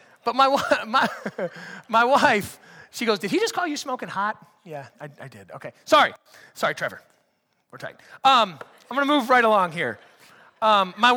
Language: English